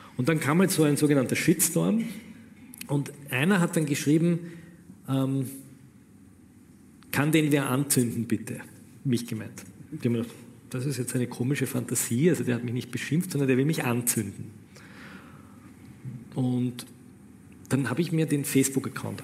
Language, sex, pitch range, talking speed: German, male, 120-145 Hz, 150 wpm